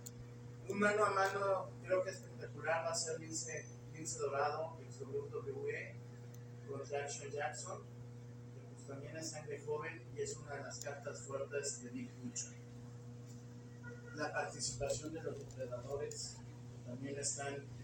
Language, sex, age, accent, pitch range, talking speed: Spanish, male, 30-49, Mexican, 120-145 Hz, 150 wpm